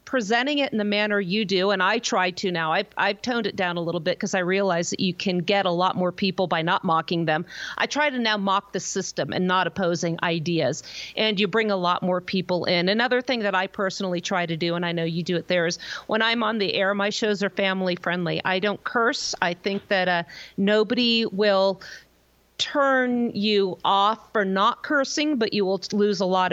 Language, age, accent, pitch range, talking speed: English, 40-59, American, 185-230 Hz, 230 wpm